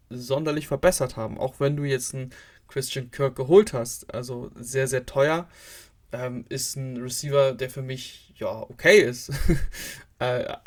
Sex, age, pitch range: male, 20-39, 130-150 Hz